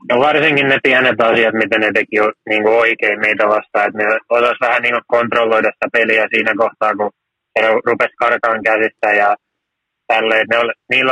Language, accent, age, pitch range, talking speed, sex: Finnish, native, 20-39, 110-120 Hz, 155 wpm, male